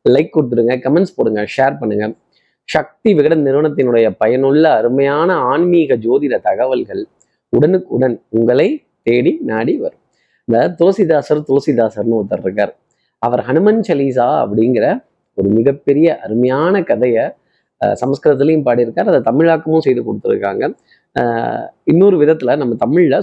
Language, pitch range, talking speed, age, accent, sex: Tamil, 125-165 Hz, 105 wpm, 30-49, native, male